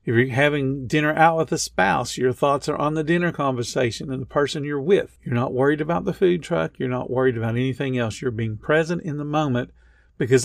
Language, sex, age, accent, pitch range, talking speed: English, male, 50-69, American, 130-160 Hz, 230 wpm